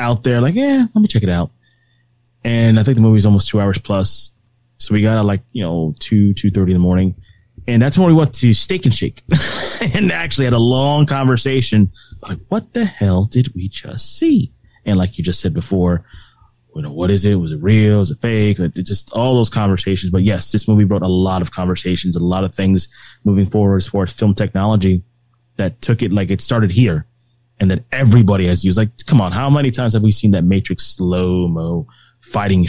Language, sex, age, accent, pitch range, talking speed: English, male, 20-39, American, 95-120 Hz, 225 wpm